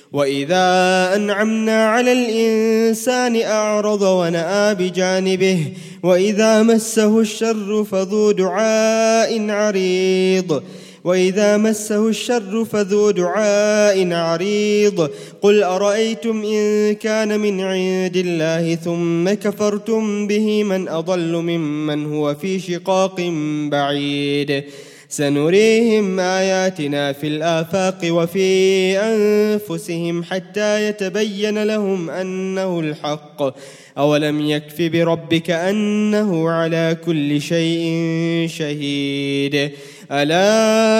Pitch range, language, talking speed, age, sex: 160-210 Hz, English, 85 wpm, 20-39, male